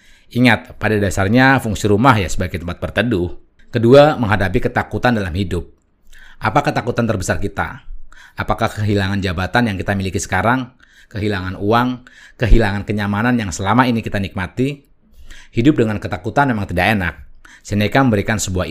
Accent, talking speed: native, 140 wpm